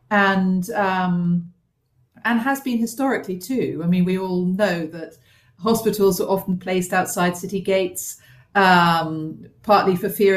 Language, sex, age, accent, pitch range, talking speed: English, female, 40-59, British, 170-200 Hz, 140 wpm